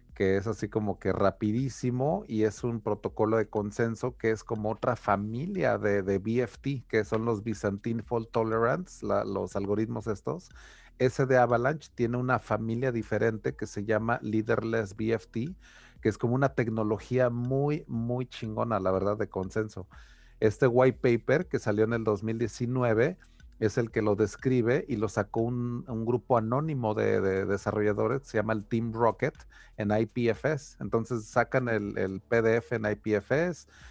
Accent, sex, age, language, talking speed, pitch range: Mexican, male, 40-59, Spanish, 160 wpm, 105-125 Hz